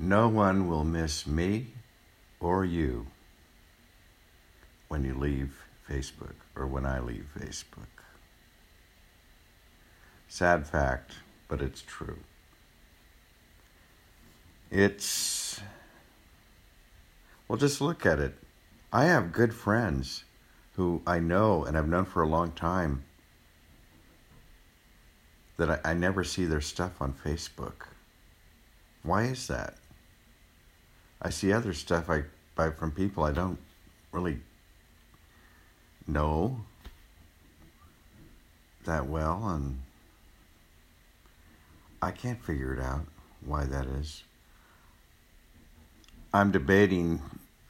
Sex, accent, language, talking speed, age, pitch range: male, American, English, 95 wpm, 60-79, 75-90 Hz